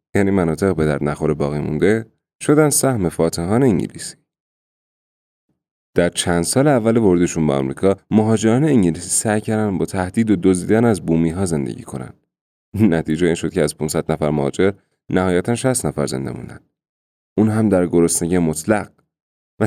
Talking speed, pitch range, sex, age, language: 150 wpm, 85-125 Hz, male, 30-49, Persian